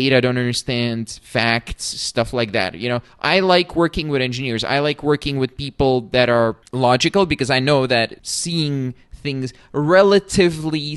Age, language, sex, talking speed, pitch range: 20-39, English, male, 160 wpm, 120-150 Hz